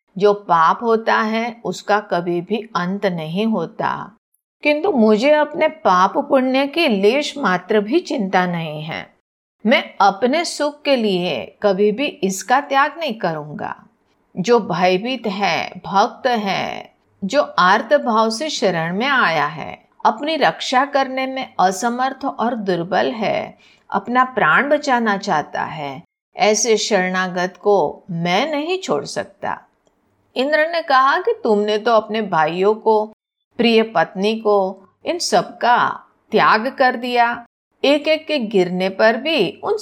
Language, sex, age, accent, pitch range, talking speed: Hindi, female, 50-69, native, 200-280 Hz, 135 wpm